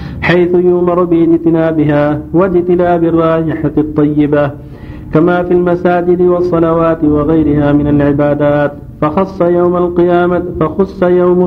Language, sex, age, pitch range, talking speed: Arabic, male, 50-69, 150-175 Hz, 95 wpm